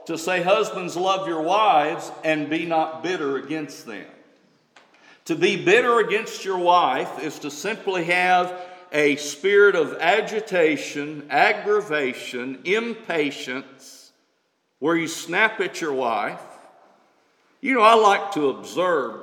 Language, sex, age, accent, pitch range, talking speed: English, male, 50-69, American, 145-215 Hz, 125 wpm